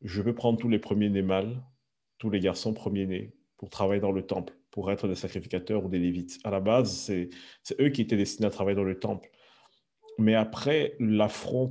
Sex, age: male, 40-59